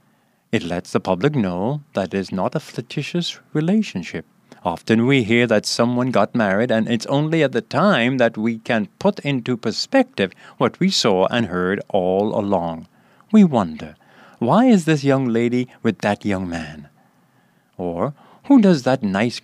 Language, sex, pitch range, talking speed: English, male, 105-140 Hz, 165 wpm